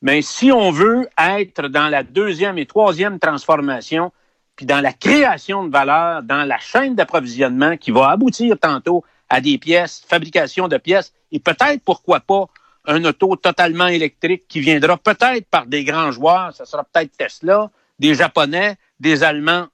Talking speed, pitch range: 165 wpm, 155-245 Hz